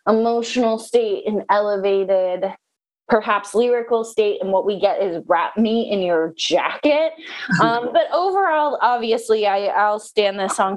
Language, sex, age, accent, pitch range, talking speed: English, female, 20-39, American, 195-250 Hz, 145 wpm